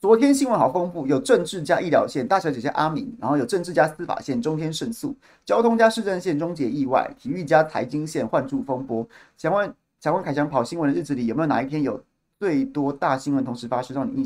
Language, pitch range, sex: Chinese, 135-190 Hz, male